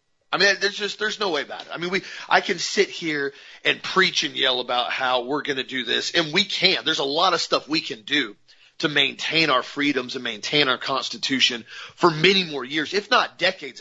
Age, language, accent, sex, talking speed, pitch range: 40-59, English, American, male, 230 wpm, 135-175 Hz